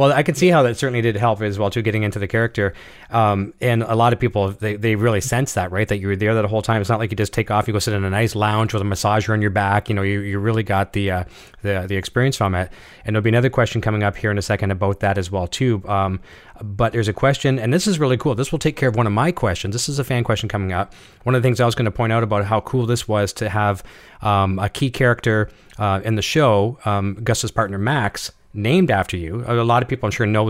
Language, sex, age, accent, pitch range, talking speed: English, male, 30-49, American, 105-120 Hz, 290 wpm